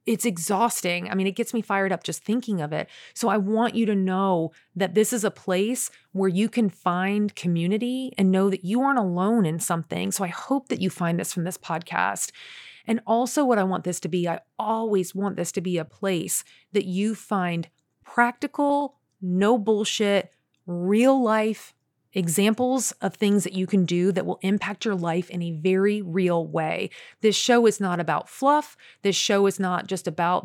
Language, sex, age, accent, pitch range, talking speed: English, female, 30-49, American, 180-230 Hz, 195 wpm